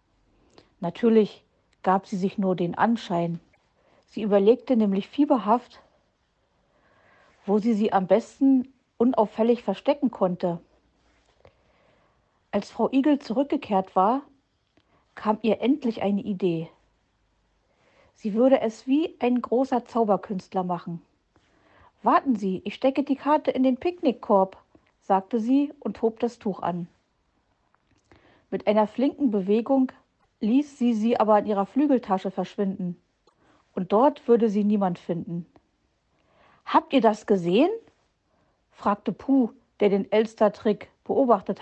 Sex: female